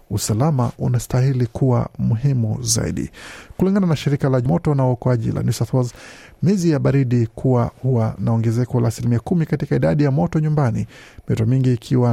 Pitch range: 115-145 Hz